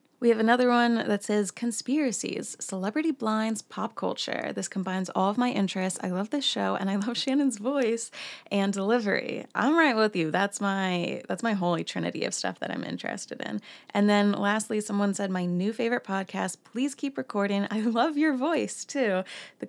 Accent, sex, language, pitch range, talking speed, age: American, female, English, 180-240 Hz, 190 wpm, 20-39